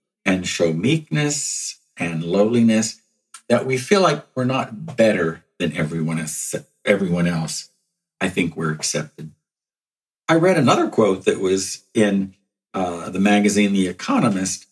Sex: male